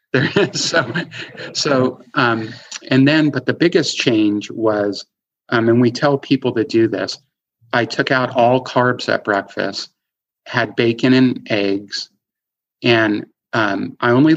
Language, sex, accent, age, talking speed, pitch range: English, male, American, 50-69, 140 wpm, 110-130 Hz